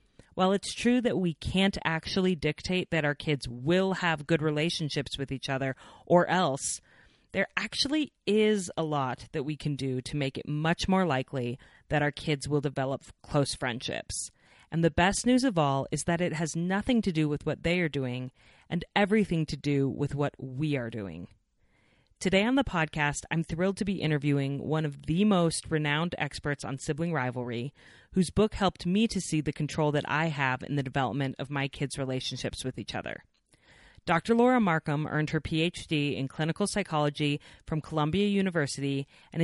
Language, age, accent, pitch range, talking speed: English, 30-49, American, 140-175 Hz, 185 wpm